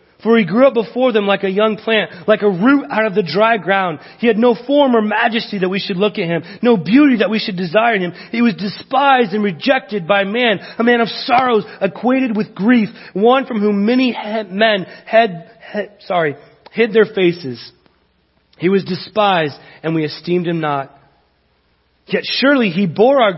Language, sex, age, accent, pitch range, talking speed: English, male, 40-59, American, 180-225 Hz, 195 wpm